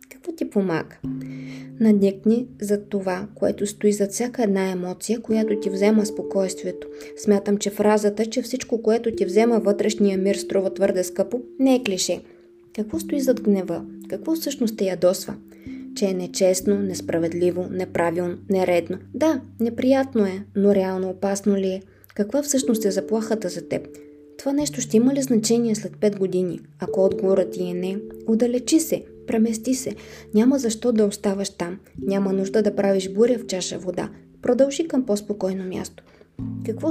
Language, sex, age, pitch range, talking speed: Bulgarian, female, 20-39, 185-230 Hz, 155 wpm